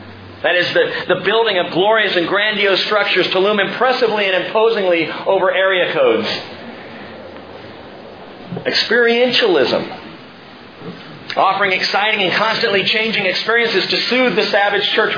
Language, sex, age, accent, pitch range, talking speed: English, male, 40-59, American, 140-210 Hz, 120 wpm